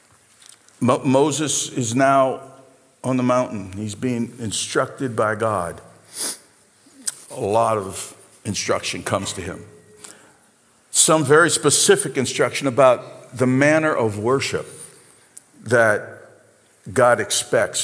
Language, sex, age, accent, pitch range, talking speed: English, male, 50-69, American, 115-145 Hz, 100 wpm